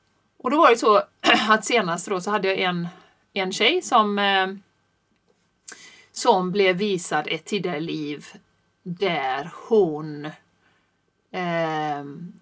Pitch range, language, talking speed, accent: 175-230 Hz, Swedish, 115 wpm, native